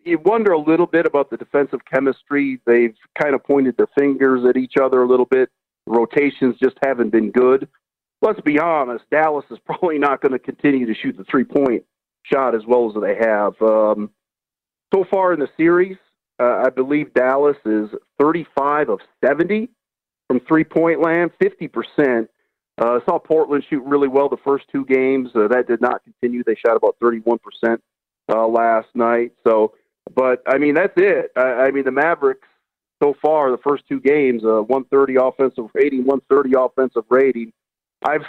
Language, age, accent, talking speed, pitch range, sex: English, 40-59, American, 175 wpm, 125-155 Hz, male